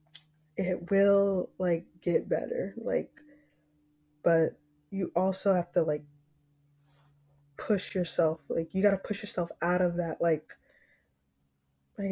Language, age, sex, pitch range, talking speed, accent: English, 20-39, female, 155-190 Hz, 120 wpm, American